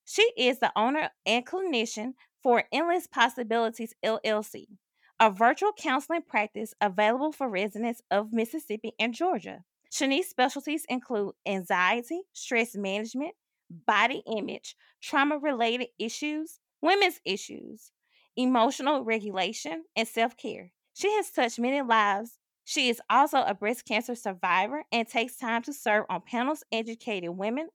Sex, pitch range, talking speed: female, 215-280 Hz, 125 wpm